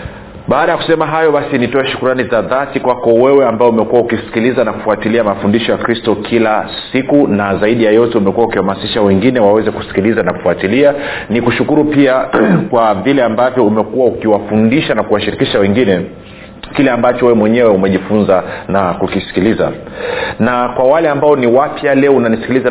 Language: Swahili